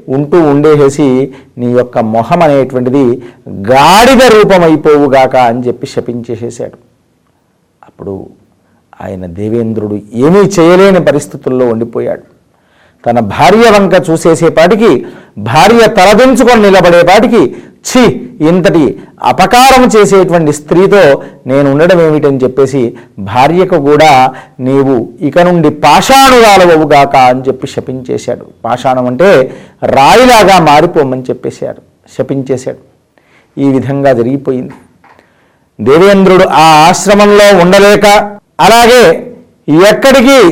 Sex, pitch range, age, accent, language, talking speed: male, 130-185 Hz, 50-69, native, Telugu, 85 wpm